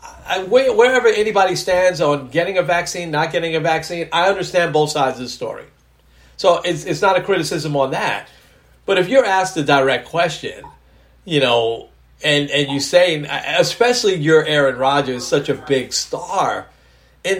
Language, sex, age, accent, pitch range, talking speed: English, male, 40-59, American, 135-185 Hz, 170 wpm